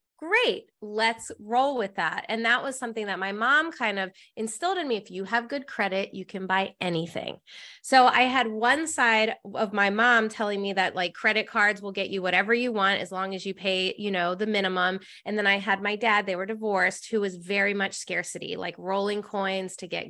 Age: 20-39